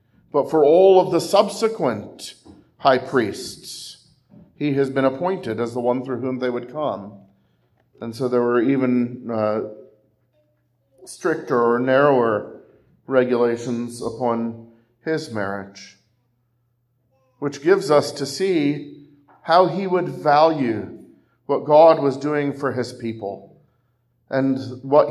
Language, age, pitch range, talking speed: English, 40-59, 120-145 Hz, 120 wpm